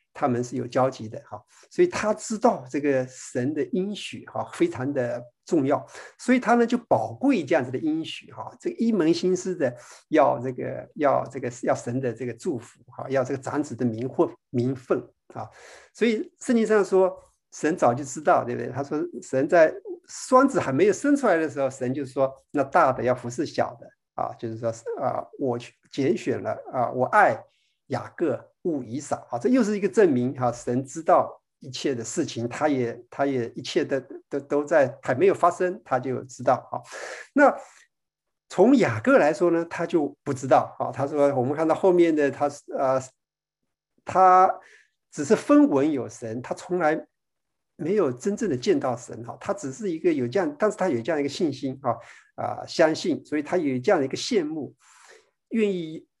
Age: 50-69